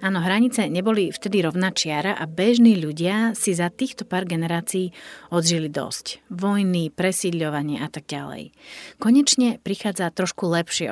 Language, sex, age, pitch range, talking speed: Slovak, female, 40-59, 160-220 Hz, 135 wpm